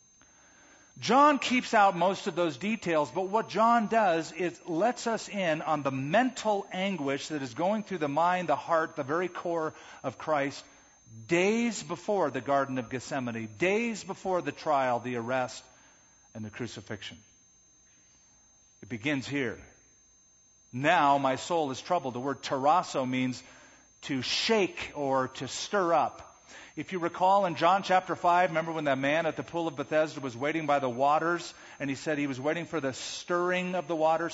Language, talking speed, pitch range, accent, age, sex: English, 170 wpm, 125-180 Hz, American, 40-59, male